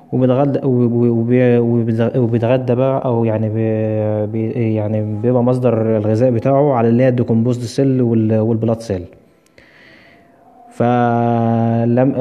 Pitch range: 115-130 Hz